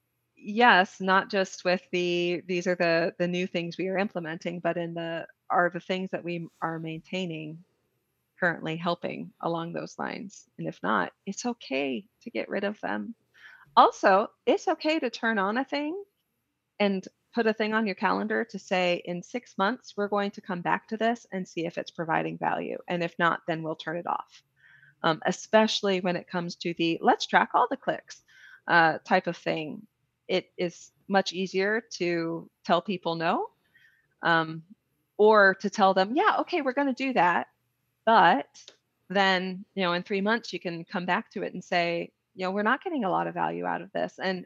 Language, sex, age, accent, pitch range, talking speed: English, female, 30-49, American, 170-205 Hz, 195 wpm